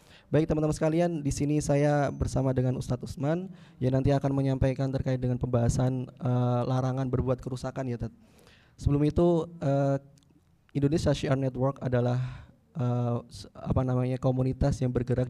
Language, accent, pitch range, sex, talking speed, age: Indonesian, native, 125-140 Hz, male, 140 wpm, 20-39